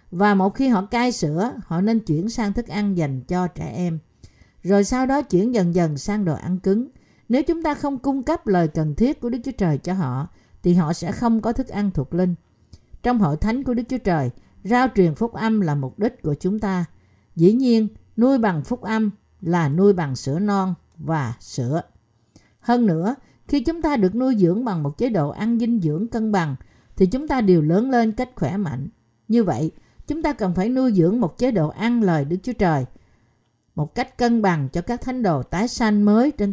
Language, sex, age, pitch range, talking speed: Vietnamese, female, 50-69, 165-230 Hz, 220 wpm